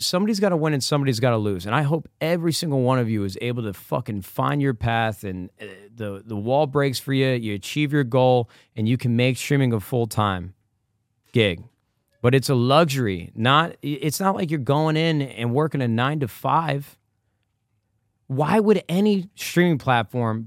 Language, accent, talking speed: English, American, 185 wpm